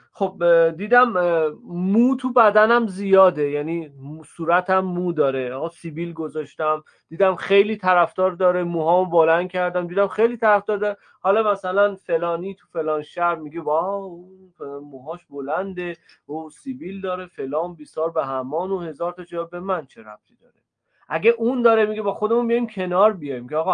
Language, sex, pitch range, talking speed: Persian, male, 160-210 Hz, 155 wpm